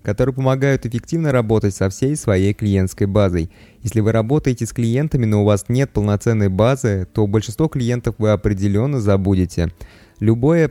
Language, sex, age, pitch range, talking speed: Russian, male, 20-39, 105-125 Hz, 150 wpm